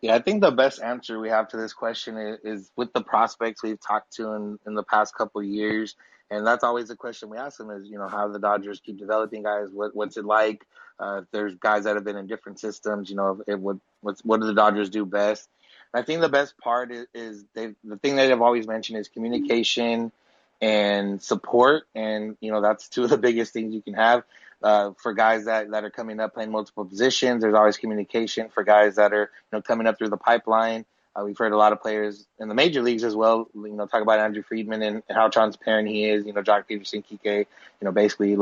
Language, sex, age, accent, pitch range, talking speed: English, male, 20-39, American, 105-115 Hz, 245 wpm